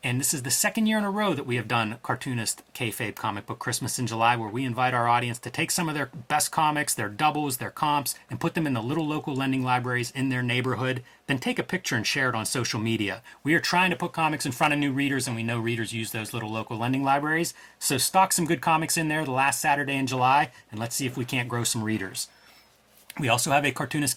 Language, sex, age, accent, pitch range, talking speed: English, male, 30-49, American, 120-155 Hz, 260 wpm